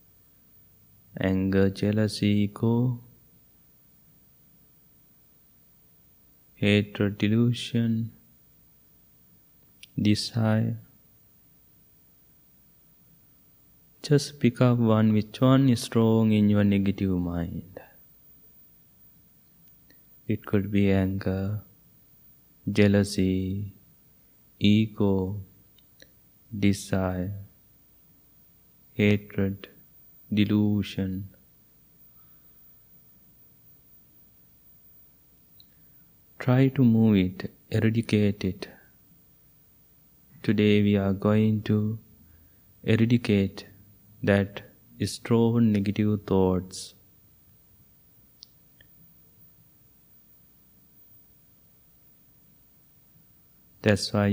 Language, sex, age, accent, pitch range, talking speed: English, male, 30-49, Indian, 95-110 Hz, 50 wpm